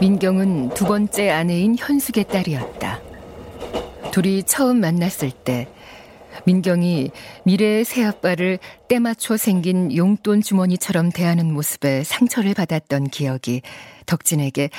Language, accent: Korean, native